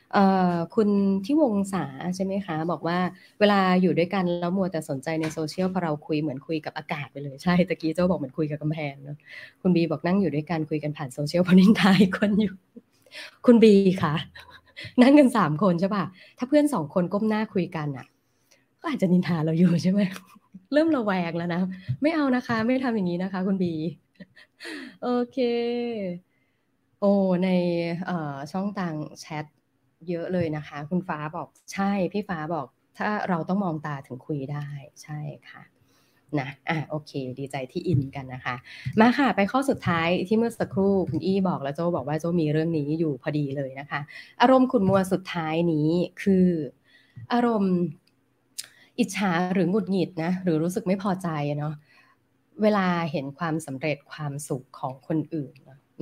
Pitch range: 150-195 Hz